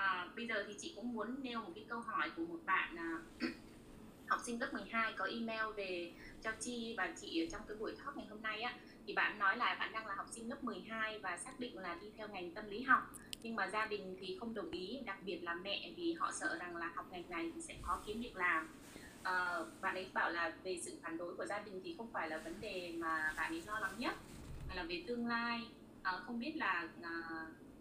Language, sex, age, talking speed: Vietnamese, female, 20-39, 255 wpm